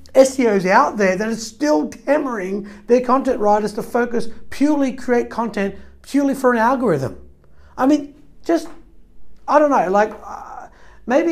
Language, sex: English, male